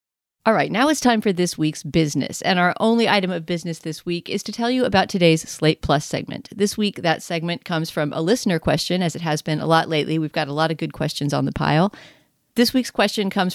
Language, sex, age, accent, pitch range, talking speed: English, female, 40-59, American, 155-210 Hz, 250 wpm